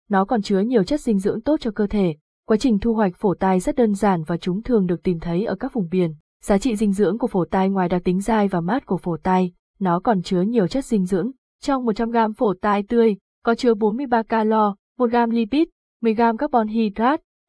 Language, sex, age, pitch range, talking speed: Vietnamese, female, 20-39, 190-230 Hz, 230 wpm